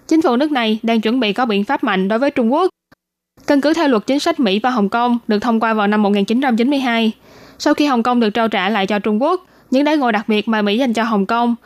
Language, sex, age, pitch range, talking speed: Vietnamese, female, 10-29, 210-255 Hz, 275 wpm